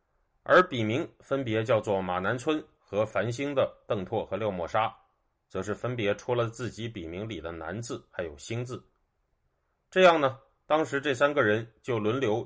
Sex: male